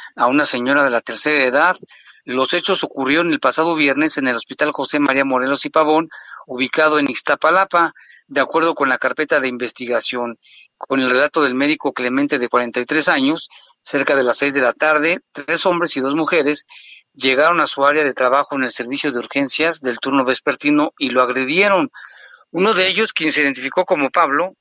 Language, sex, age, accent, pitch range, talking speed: Spanish, male, 40-59, Mexican, 135-170 Hz, 190 wpm